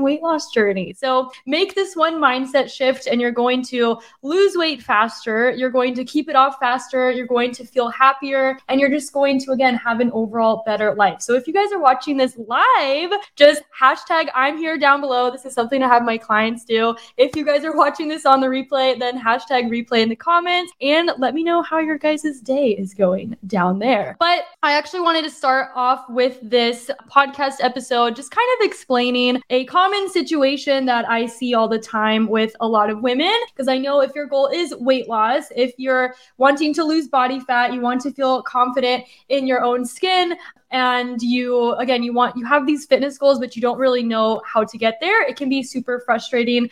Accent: American